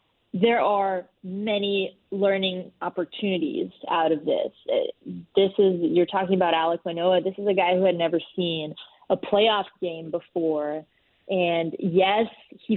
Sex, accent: female, American